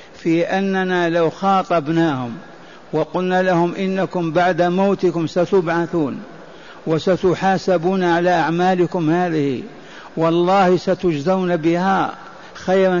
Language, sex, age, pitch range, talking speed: Arabic, male, 60-79, 165-185 Hz, 85 wpm